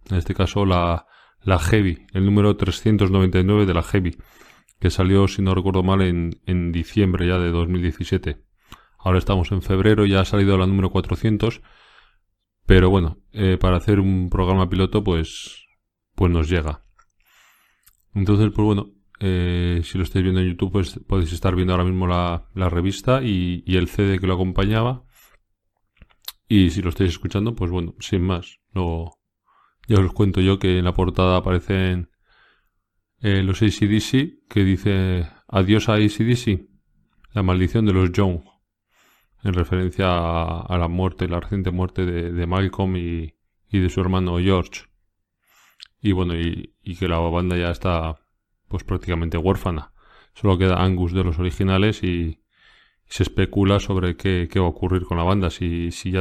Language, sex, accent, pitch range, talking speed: Spanish, male, Spanish, 90-100 Hz, 165 wpm